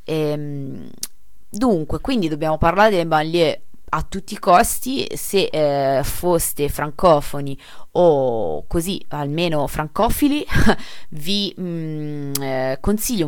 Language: Italian